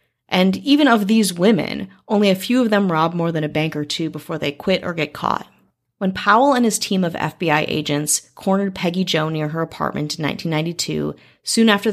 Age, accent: 30-49, American